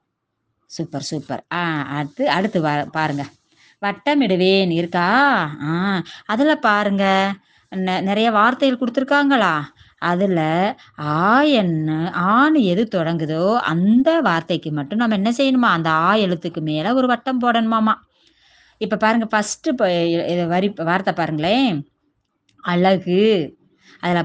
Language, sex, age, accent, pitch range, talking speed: Tamil, female, 20-39, native, 165-235 Hz, 105 wpm